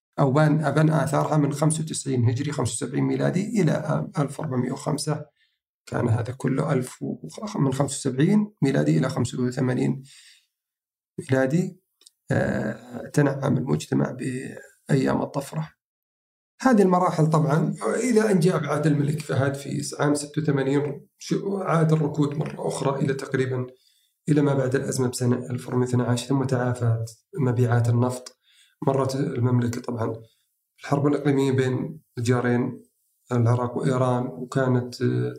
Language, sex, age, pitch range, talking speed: Arabic, male, 40-59, 125-150 Hz, 105 wpm